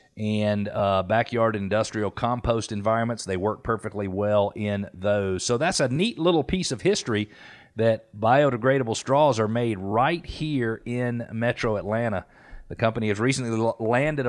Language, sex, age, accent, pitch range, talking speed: English, male, 40-59, American, 100-125 Hz, 145 wpm